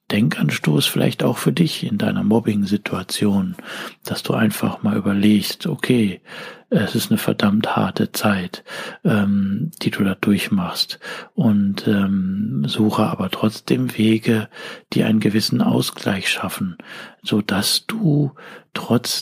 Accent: German